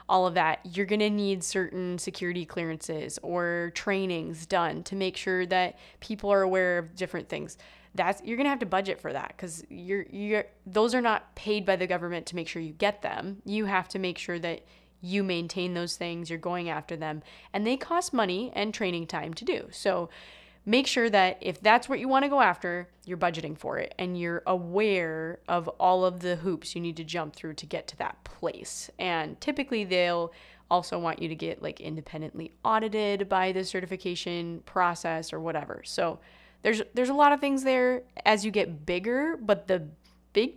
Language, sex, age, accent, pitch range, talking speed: English, female, 20-39, American, 175-215 Hz, 205 wpm